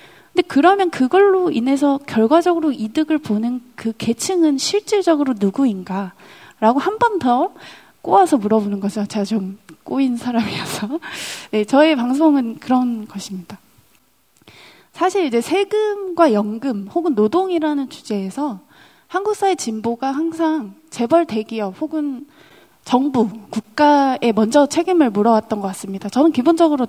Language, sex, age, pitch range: Korean, female, 20-39, 220-320 Hz